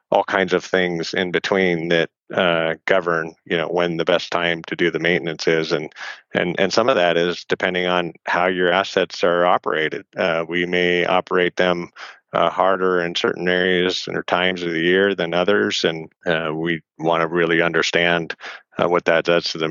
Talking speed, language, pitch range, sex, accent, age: 195 wpm, English, 80-90 Hz, male, American, 40-59